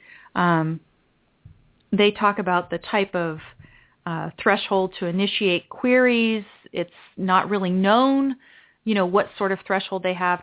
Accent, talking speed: American, 140 wpm